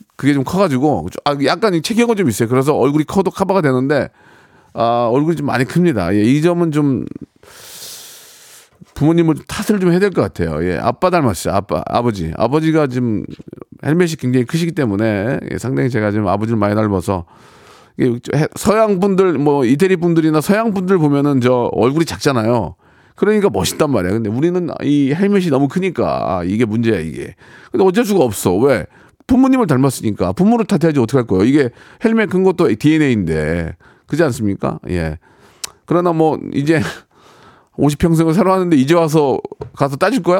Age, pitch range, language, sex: 40-59, 115-170 Hz, Korean, male